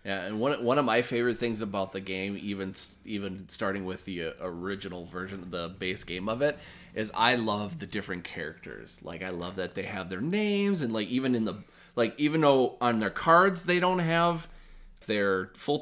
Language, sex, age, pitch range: English, male, 20-39, 95-125 Hz